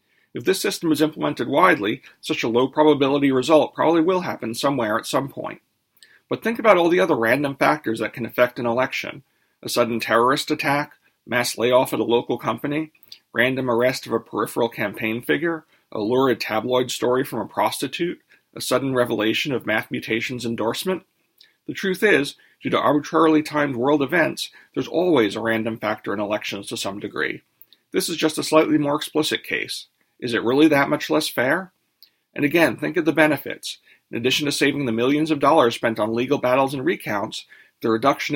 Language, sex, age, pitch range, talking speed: English, male, 40-59, 120-155 Hz, 185 wpm